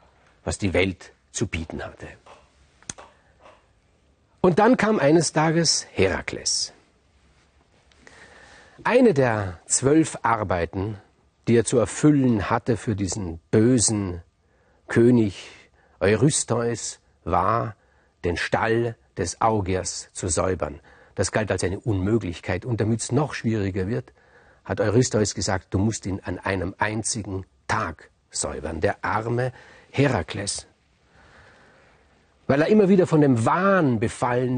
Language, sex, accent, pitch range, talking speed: German, male, German, 90-130 Hz, 115 wpm